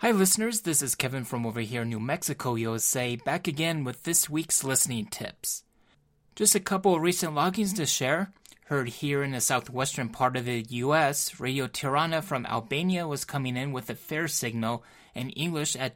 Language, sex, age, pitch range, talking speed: English, male, 20-39, 120-160 Hz, 190 wpm